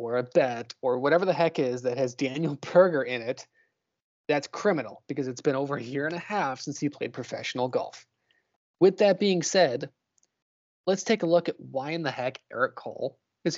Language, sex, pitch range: English, male, 140-195 Hz